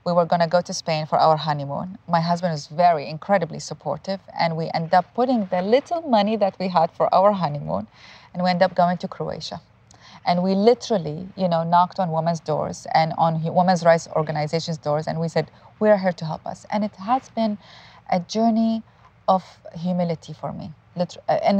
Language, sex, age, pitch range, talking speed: English, female, 30-49, 165-215 Hz, 195 wpm